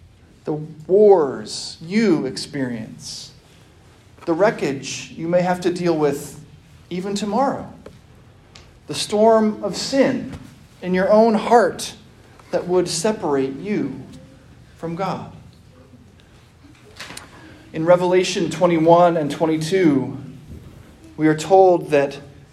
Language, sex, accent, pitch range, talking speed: English, male, American, 135-185 Hz, 100 wpm